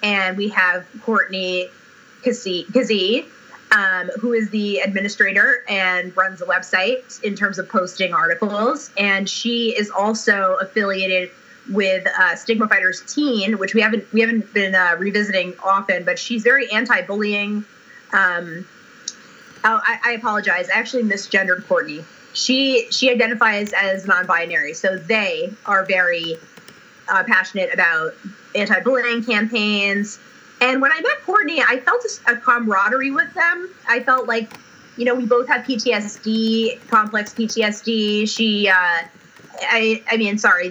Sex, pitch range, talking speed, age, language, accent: female, 190-240 Hz, 140 wpm, 30-49, English, American